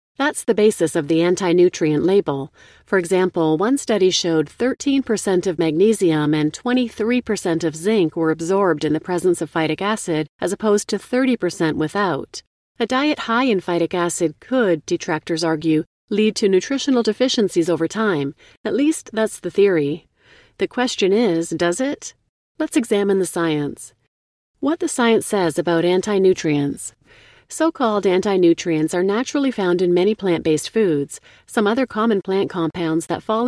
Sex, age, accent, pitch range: female, 40-59, American, 165-220 Hz